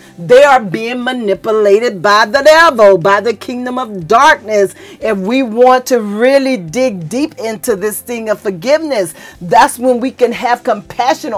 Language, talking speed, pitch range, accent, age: English, 160 wpm, 225-270 Hz, American, 40-59